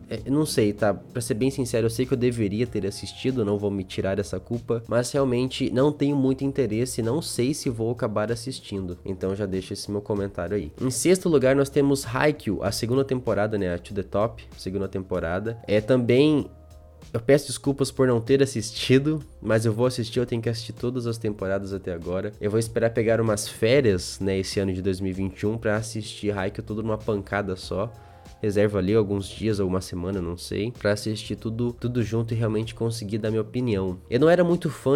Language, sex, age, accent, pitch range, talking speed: Portuguese, male, 20-39, Brazilian, 100-125 Hz, 205 wpm